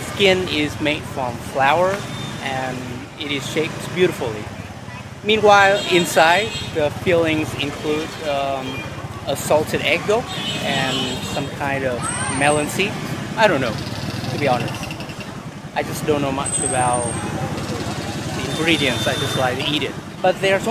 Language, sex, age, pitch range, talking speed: Vietnamese, male, 30-49, 130-165 Hz, 140 wpm